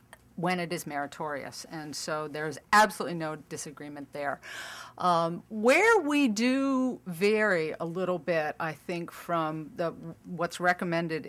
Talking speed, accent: 130 wpm, American